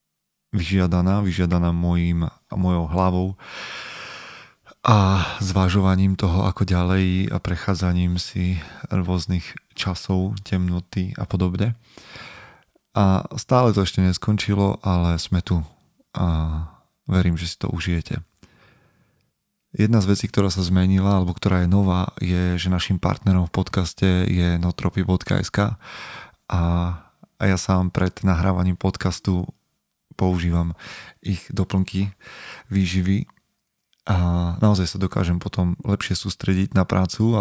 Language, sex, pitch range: Slovak, male, 90-95 Hz